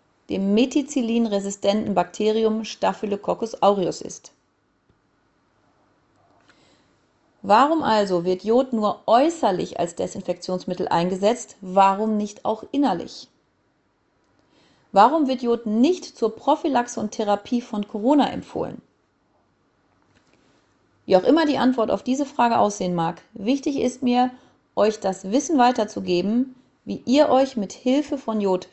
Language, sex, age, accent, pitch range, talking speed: German, female, 30-49, German, 200-260 Hz, 115 wpm